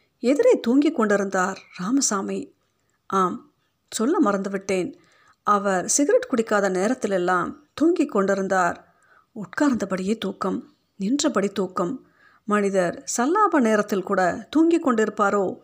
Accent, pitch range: native, 190-260 Hz